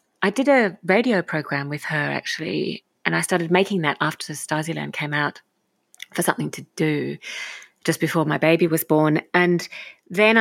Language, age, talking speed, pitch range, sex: English, 40-59, 175 wpm, 155-190 Hz, female